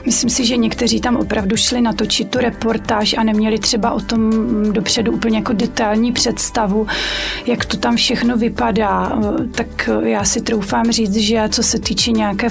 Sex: female